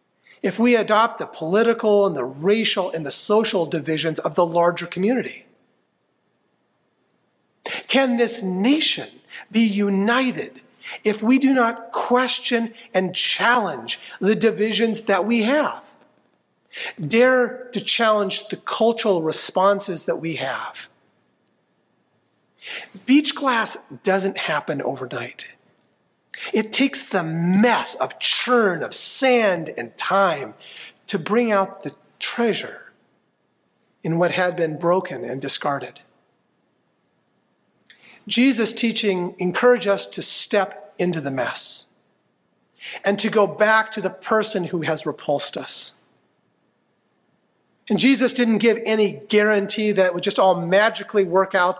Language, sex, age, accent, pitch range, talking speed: English, male, 40-59, American, 185-230 Hz, 120 wpm